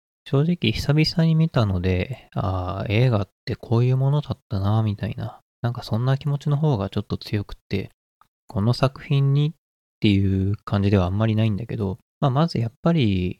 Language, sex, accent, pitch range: Japanese, male, native, 95-130 Hz